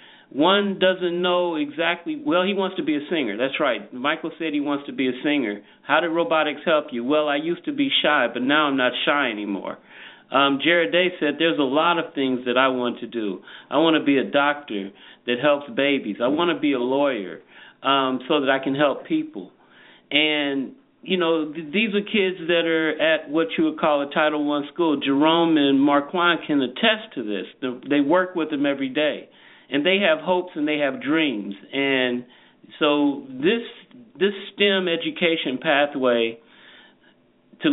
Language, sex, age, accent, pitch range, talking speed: English, male, 40-59, American, 135-175 Hz, 190 wpm